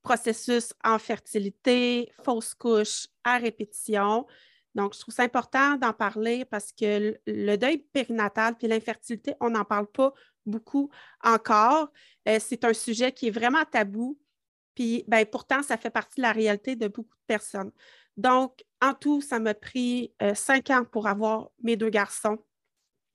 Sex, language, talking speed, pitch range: female, French, 160 wpm, 215-255 Hz